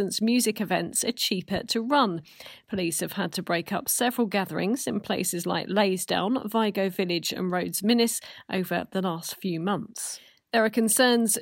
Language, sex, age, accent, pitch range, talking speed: English, female, 40-59, British, 185-240 Hz, 170 wpm